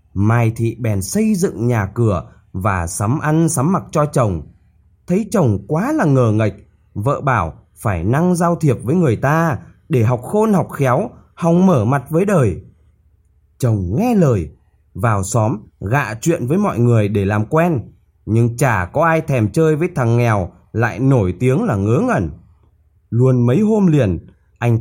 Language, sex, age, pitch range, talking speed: Vietnamese, male, 20-39, 95-155 Hz, 175 wpm